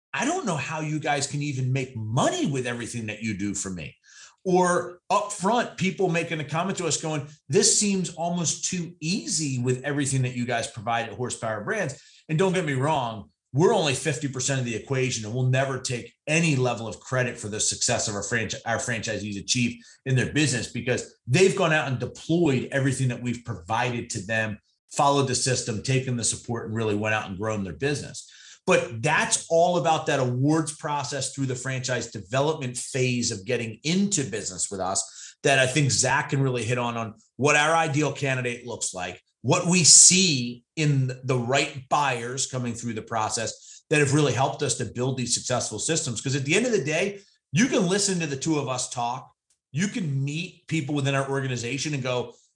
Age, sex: 40-59, male